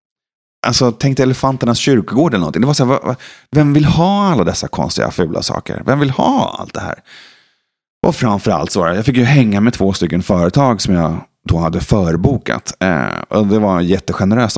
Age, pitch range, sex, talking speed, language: 30-49, 95-130 Hz, male, 200 wpm, Swedish